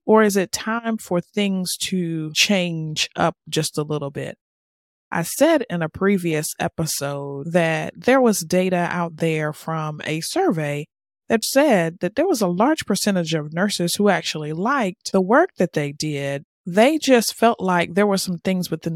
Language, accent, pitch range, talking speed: English, American, 155-205 Hz, 175 wpm